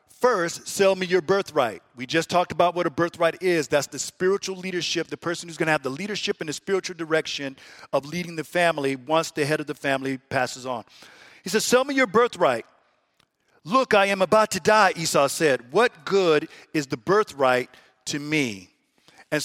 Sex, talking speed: male, 195 wpm